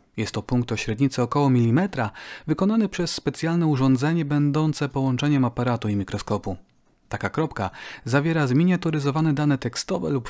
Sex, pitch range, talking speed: male, 115-150 Hz, 135 wpm